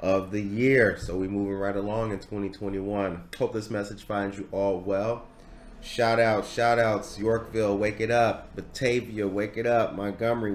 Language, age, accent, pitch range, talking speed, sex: English, 30-49, American, 95-120 Hz, 170 wpm, male